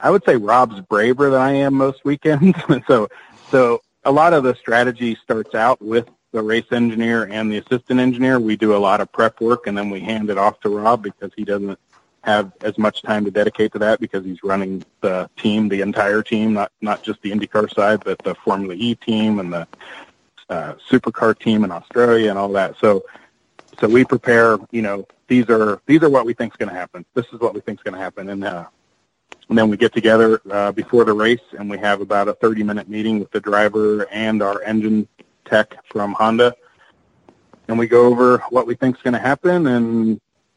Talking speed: 220 wpm